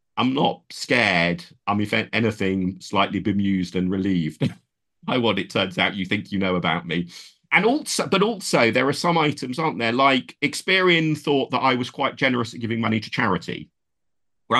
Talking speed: 185 wpm